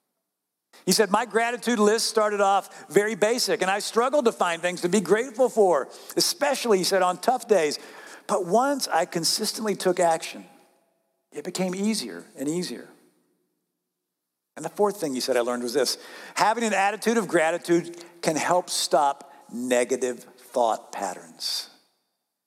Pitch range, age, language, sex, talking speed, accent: 125-200 Hz, 50-69, English, male, 150 wpm, American